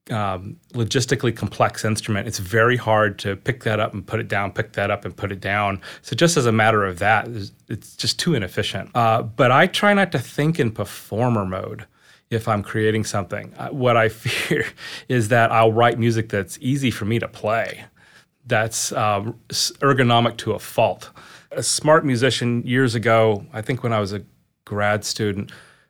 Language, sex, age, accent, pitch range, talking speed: English, male, 30-49, American, 105-125 Hz, 185 wpm